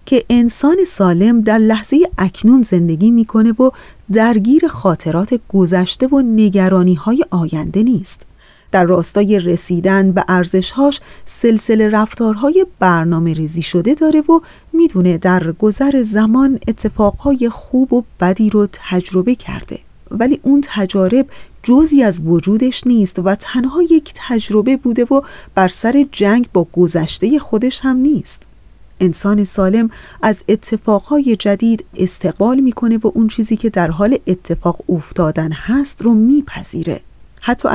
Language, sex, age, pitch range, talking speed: Persian, female, 40-59, 185-250 Hz, 125 wpm